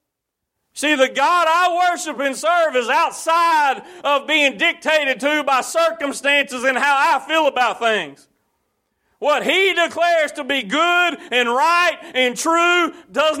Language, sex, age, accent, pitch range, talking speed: English, male, 40-59, American, 225-320 Hz, 145 wpm